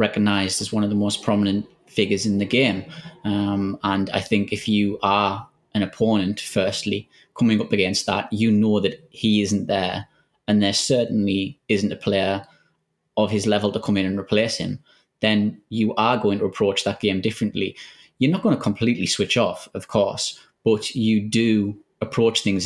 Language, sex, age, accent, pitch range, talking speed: English, male, 20-39, British, 100-110 Hz, 185 wpm